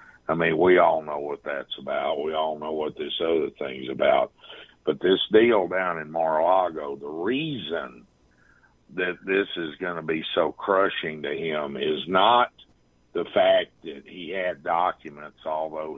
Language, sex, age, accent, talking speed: English, male, 50-69, American, 160 wpm